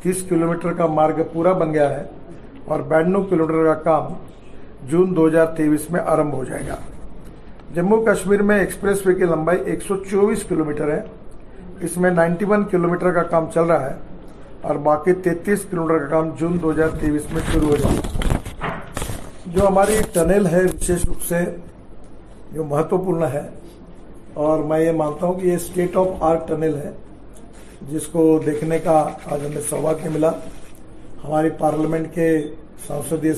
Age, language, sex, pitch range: 60-79, Urdu, male, 150-175 Hz